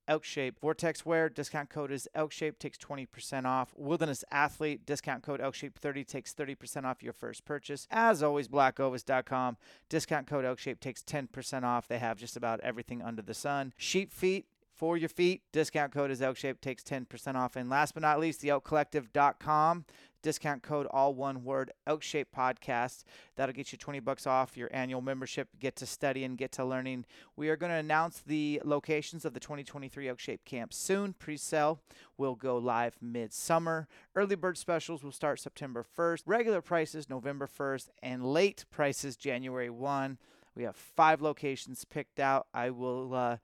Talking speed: 175 wpm